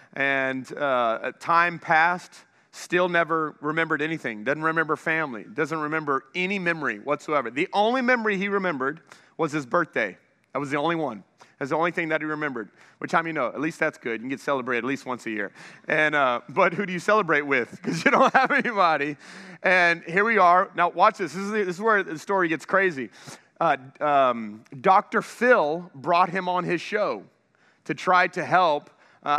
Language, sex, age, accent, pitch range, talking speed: English, male, 30-49, American, 145-180 Hz, 200 wpm